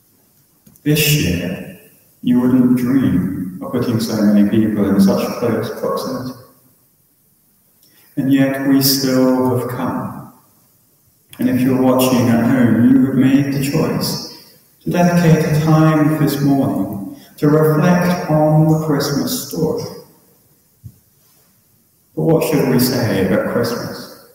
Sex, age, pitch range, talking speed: male, 40-59, 115-135 Hz, 125 wpm